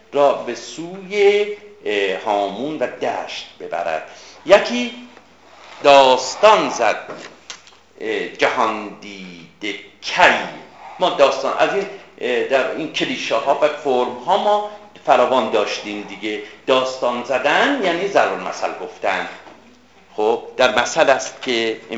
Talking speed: 105 wpm